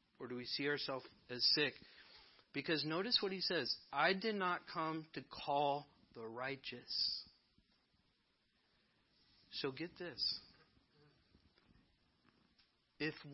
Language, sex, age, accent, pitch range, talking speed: English, male, 40-59, American, 135-170 Hz, 110 wpm